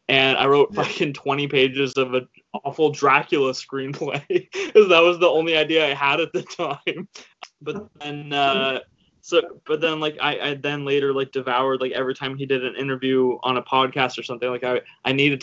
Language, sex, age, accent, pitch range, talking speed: English, male, 20-39, American, 130-155 Hz, 200 wpm